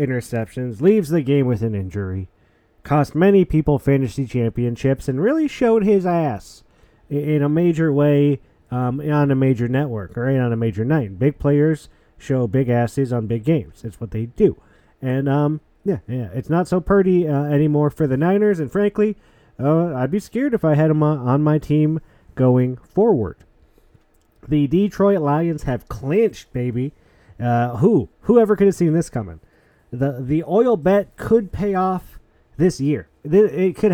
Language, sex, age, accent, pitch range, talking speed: English, male, 30-49, American, 130-195 Hz, 170 wpm